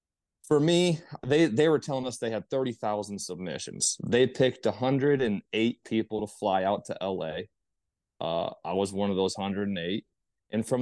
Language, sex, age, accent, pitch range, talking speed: English, male, 30-49, American, 100-125 Hz, 160 wpm